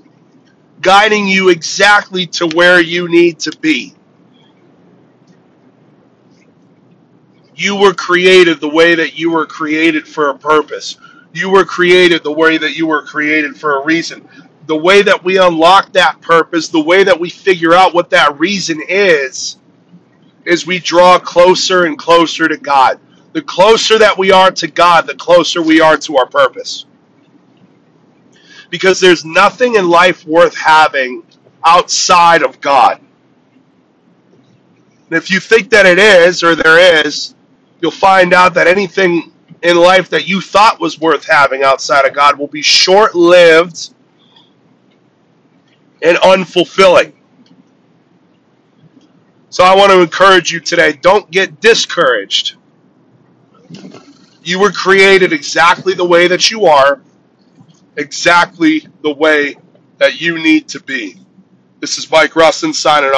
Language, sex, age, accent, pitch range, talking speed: English, male, 40-59, American, 160-190 Hz, 140 wpm